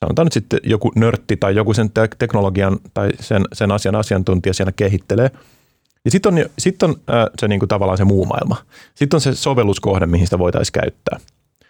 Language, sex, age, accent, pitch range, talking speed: Finnish, male, 30-49, native, 95-120 Hz, 190 wpm